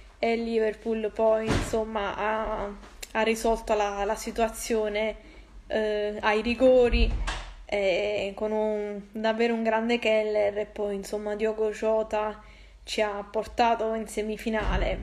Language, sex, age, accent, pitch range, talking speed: Italian, female, 10-29, native, 210-225 Hz, 120 wpm